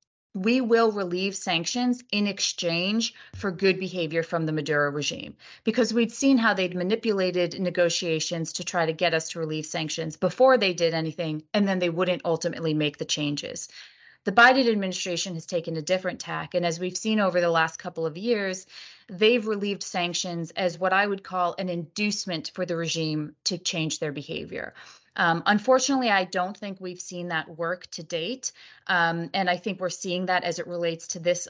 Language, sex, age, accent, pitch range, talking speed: English, female, 30-49, American, 165-195 Hz, 185 wpm